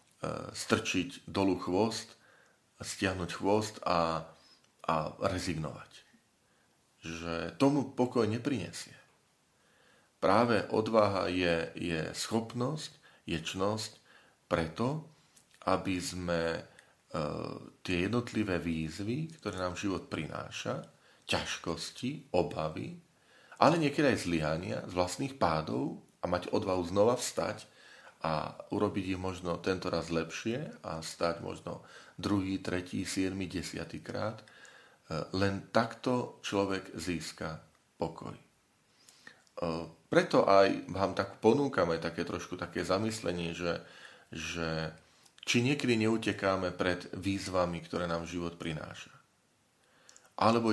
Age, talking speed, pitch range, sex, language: 40-59, 100 wpm, 85-110 Hz, male, Slovak